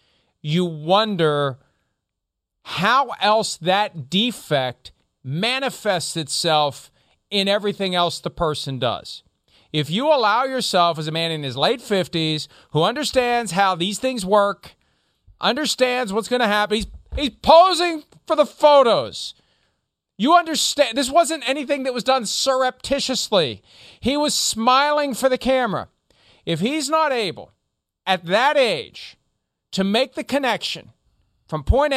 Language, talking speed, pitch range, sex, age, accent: English, 130 wpm, 160-250 Hz, male, 40-59, American